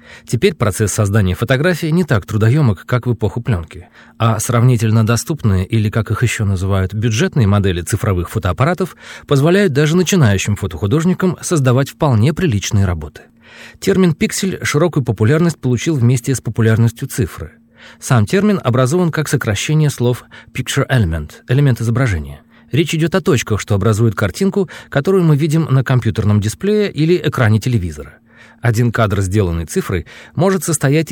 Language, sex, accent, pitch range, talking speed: Russian, male, native, 105-155 Hz, 140 wpm